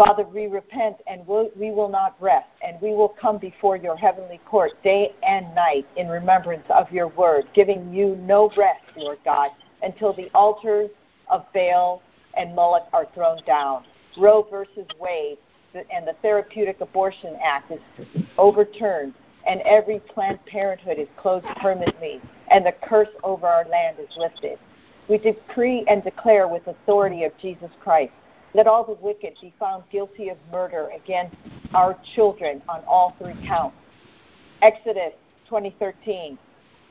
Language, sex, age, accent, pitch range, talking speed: English, female, 50-69, American, 180-215 Hz, 150 wpm